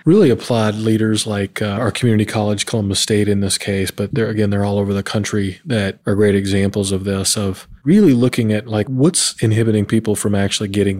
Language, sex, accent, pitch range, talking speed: English, male, American, 100-120 Hz, 205 wpm